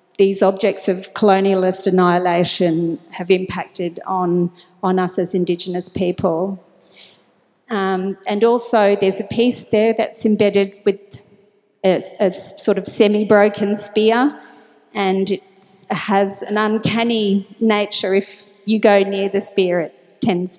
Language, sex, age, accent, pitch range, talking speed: English, female, 40-59, Australian, 185-210 Hz, 125 wpm